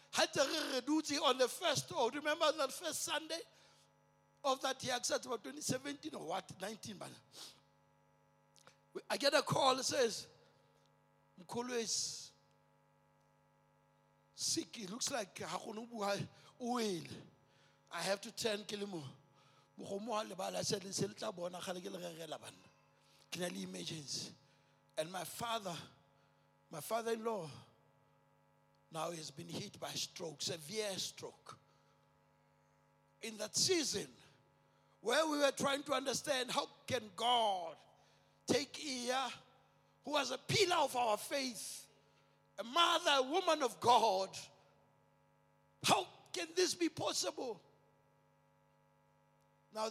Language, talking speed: English, 105 wpm